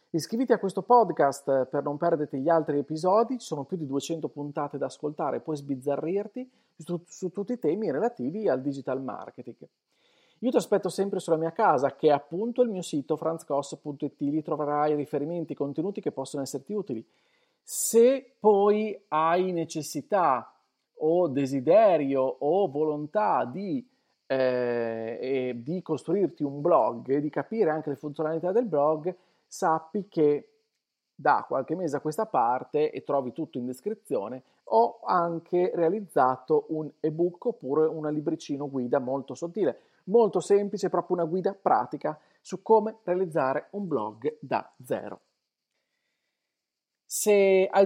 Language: Italian